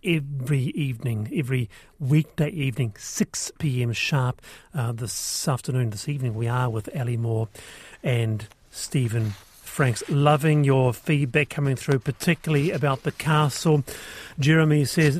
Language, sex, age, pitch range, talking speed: English, male, 40-59, 135-170 Hz, 125 wpm